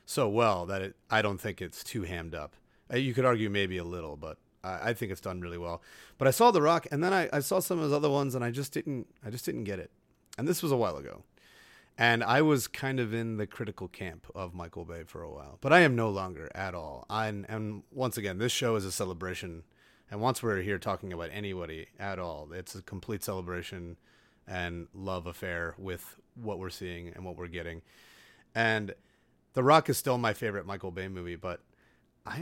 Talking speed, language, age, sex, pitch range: 225 wpm, English, 30-49, male, 90-120 Hz